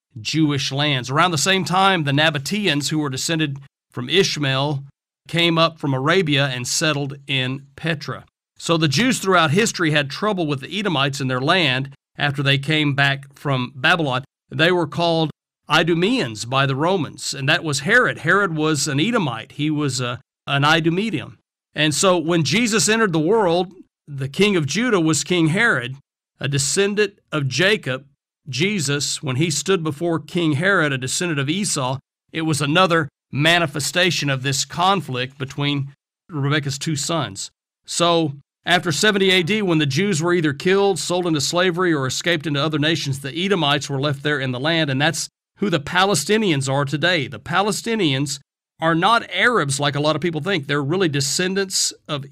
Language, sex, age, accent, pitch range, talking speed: English, male, 50-69, American, 140-180 Hz, 170 wpm